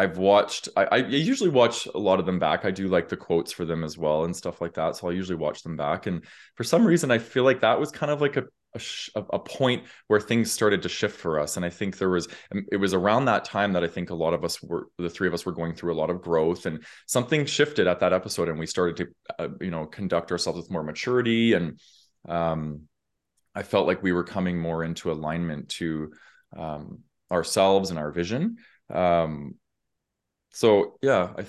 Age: 20-39